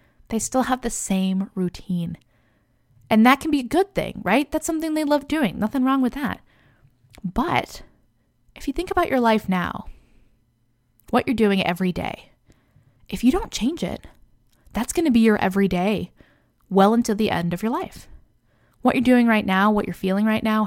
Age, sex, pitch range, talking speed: 20-39, female, 175-240 Hz, 190 wpm